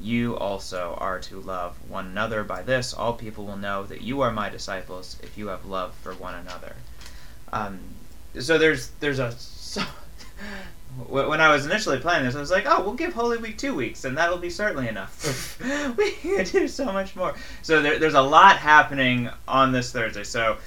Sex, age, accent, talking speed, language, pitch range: male, 30-49, American, 195 wpm, English, 120-155 Hz